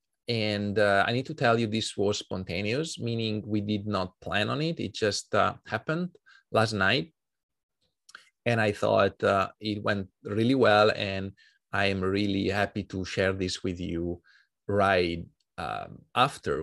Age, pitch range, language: 30-49, 95-120 Hz, English